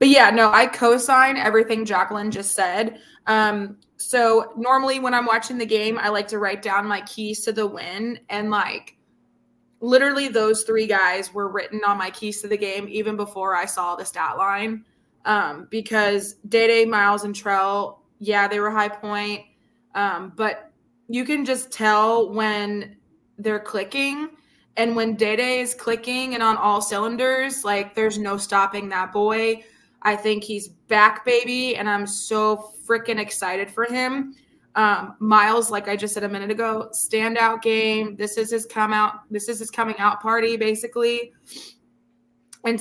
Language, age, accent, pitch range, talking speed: English, 20-39, American, 205-230 Hz, 165 wpm